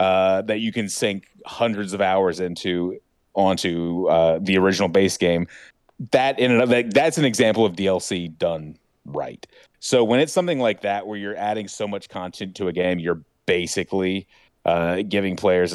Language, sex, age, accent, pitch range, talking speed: English, male, 30-49, American, 90-115 Hz, 170 wpm